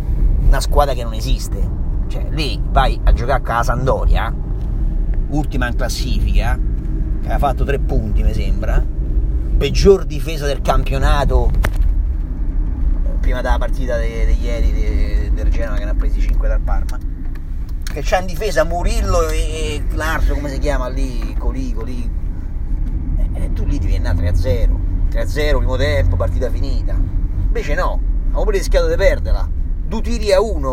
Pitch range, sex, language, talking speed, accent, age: 70-95 Hz, male, Italian, 160 wpm, native, 30-49